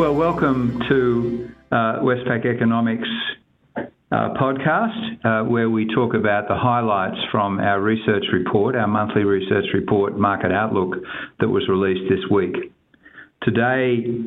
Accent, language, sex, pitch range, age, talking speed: Australian, English, male, 105-125 Hz, 50-69, 130 wpm